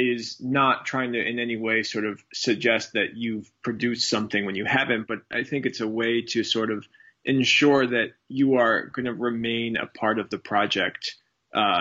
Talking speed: 200 wpm